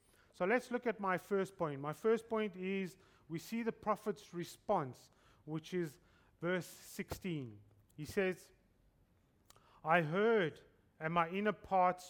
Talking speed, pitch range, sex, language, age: 140 wpm, 145-195 Hz, male, English, 30-49